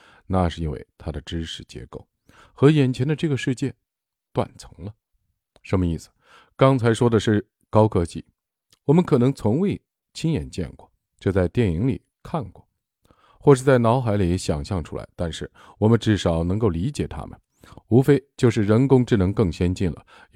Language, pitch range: Chinese, 90-120 Hz